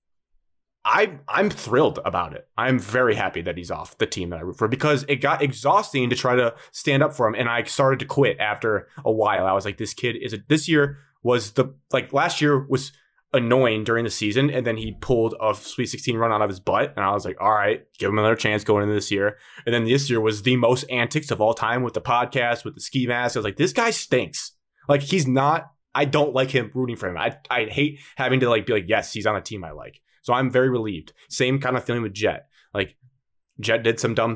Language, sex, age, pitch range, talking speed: English, male, 20-39, 105-135 Hz, 250 wpm